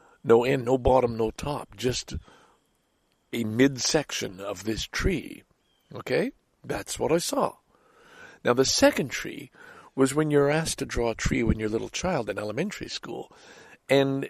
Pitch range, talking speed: 110-155 Hz, 160 wpm